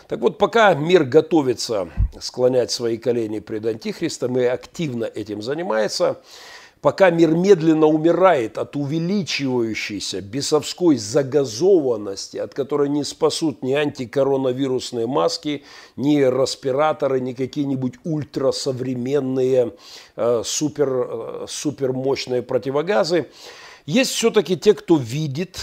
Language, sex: Russian, male